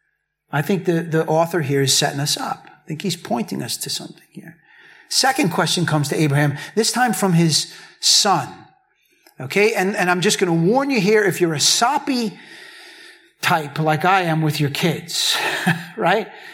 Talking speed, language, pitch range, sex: 180 wpm, English, 150-200 Hz, male